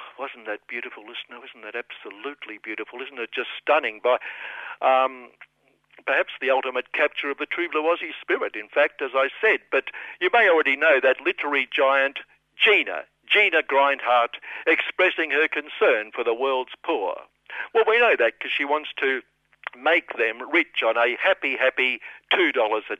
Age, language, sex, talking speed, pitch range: 60-79, English, male, 165 wpm, 135-175 Hz